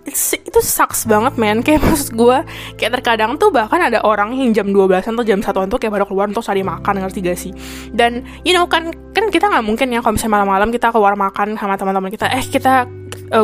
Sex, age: female, 10-29